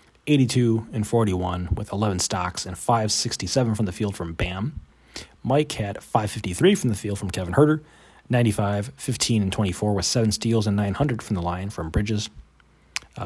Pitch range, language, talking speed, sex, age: 95-130 Hz, English, 165 wpm, male, 30-49